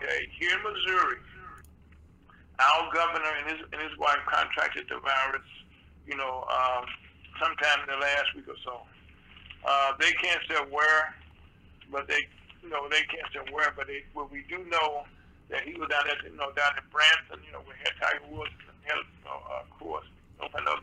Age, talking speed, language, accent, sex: 50-69, 190 wpm, English, American, male